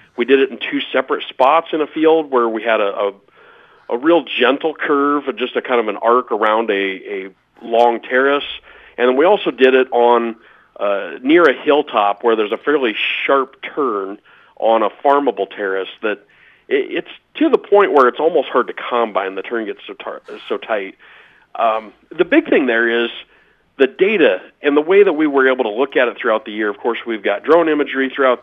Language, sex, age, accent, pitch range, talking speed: English, male, 40-59, American, 110-145 Hz, 210 wpm